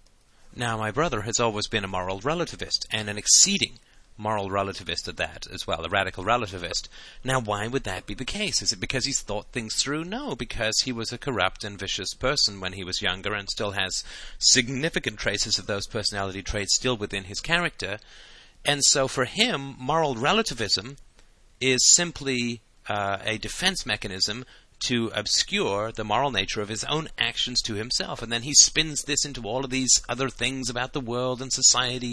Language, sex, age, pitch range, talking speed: English, male, 30-49, 105-130 Hz, 185 wpm